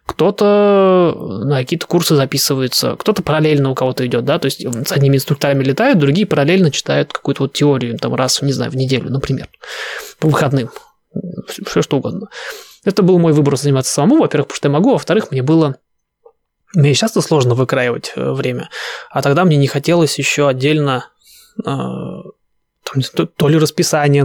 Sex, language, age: male, Russian, 20-39